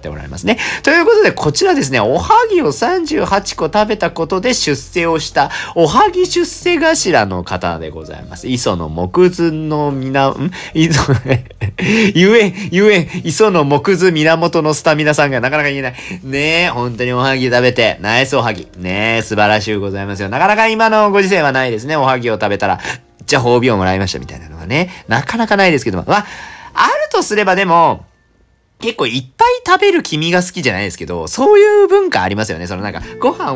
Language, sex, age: Japanese, male, 40-59